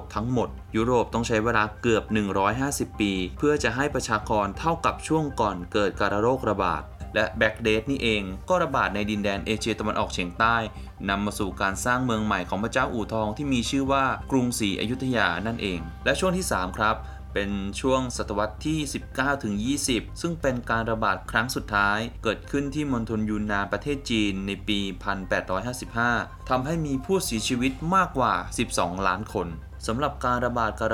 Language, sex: Thai, male